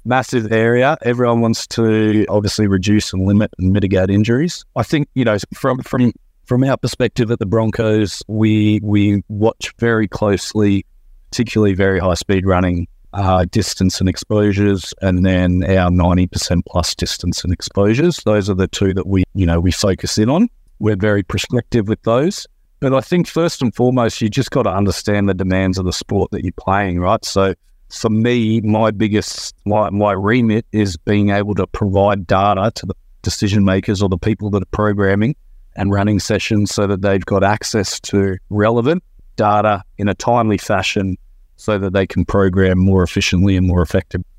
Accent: Australian